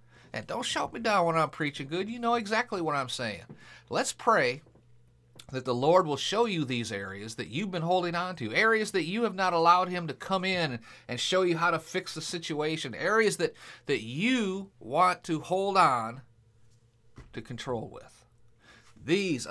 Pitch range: 120-170 Hz